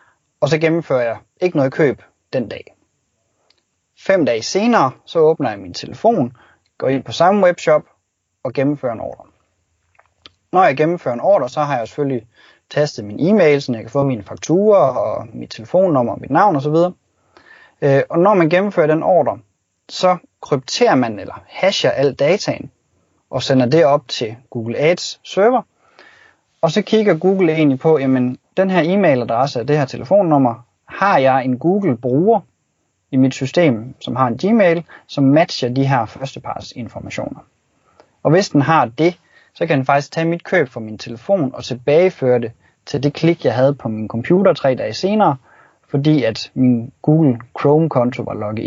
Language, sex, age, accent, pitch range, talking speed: Danish, male, 30-49, native, 120-165 Hz, 175 wpm